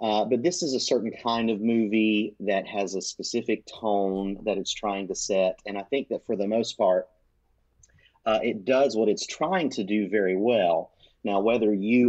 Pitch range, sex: 100-135 Hz, male